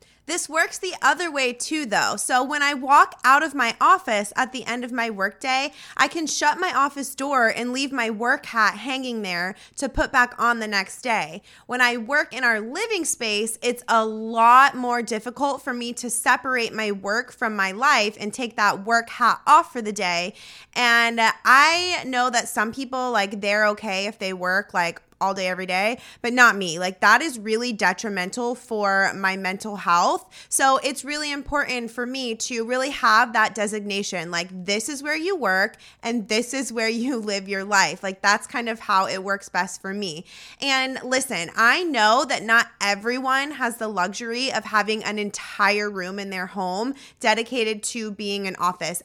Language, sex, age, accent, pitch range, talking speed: English, female, 20-39, American, 205-260 Hz, 195 wpm